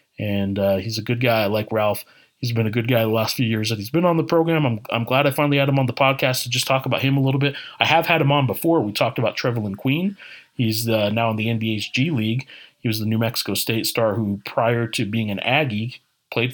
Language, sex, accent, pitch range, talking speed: English, male, American, 115-140 Hz, 270 wpm